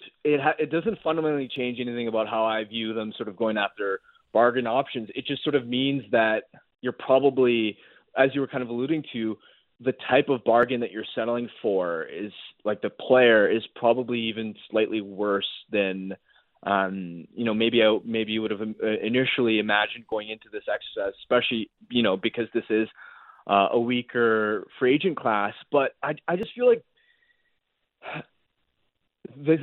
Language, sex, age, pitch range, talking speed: English, male, 20-39, 110-145 Hz, 170 wpm